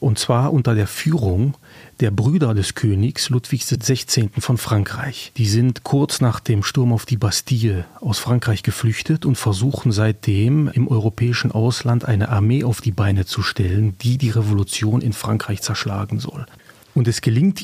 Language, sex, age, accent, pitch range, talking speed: German, male, 40-59, German, 105-125 Hz, 165 wpm